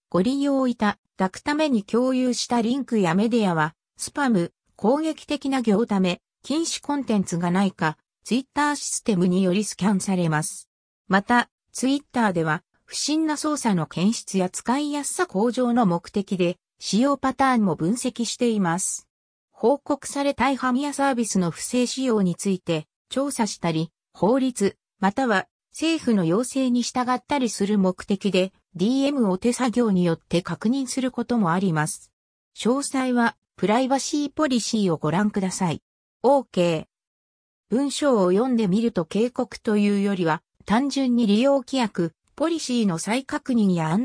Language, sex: Japanese, female